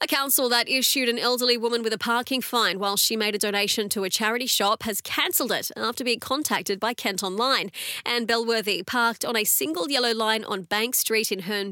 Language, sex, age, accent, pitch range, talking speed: English, female, 30-49, Australian, 200-260 Hz, 215 wpm